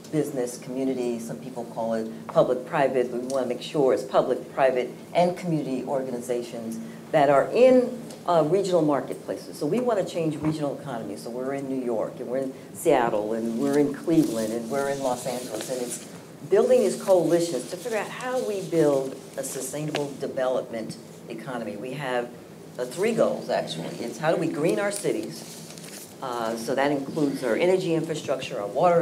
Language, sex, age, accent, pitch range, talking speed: English, female, 60-79, American, 130-165 Hz, 180 wpm